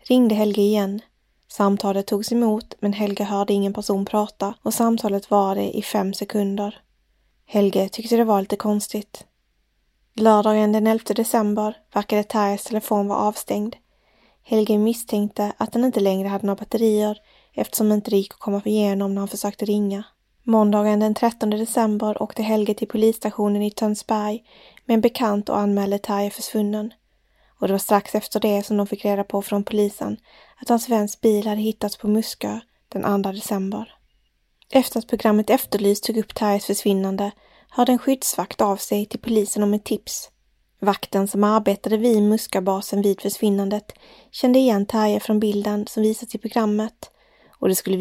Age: 20-39